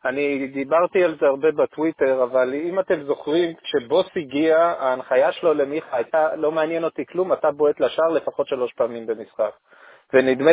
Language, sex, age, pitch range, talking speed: Hebrew, male, 30-49, 140-215 Hz, 160 wpm